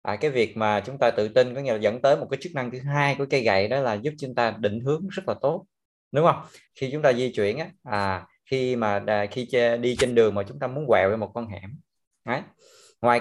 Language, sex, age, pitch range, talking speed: Vietnamese, male, 20-39, 105-145 Hz, 270 wpm